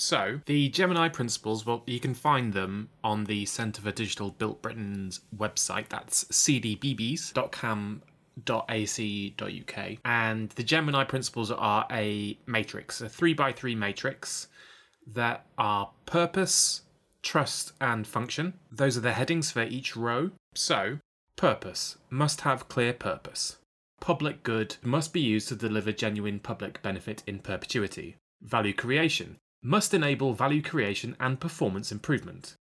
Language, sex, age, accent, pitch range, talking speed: English, male, 20-39, British, 110-145 Hz, 130 wpm